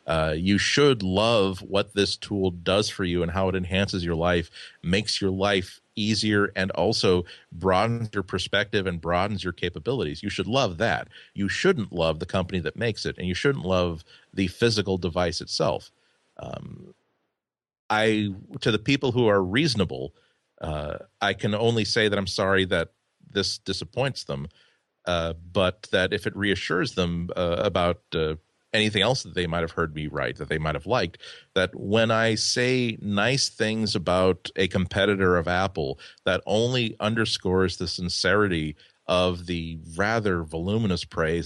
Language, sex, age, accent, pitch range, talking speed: English, male, 40-59, American, 90-105 Hz, 165 wpm